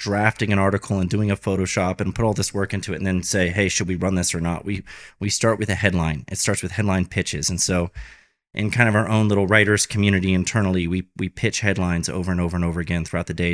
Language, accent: English, American